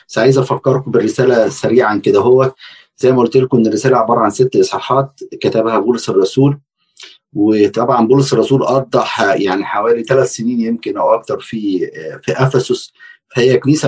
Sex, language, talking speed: male, Arabic, 150 wpm